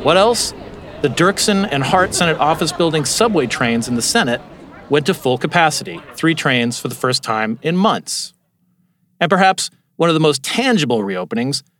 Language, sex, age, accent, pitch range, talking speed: English, male, 40-59, American, 135-175 Hz, 175 wpm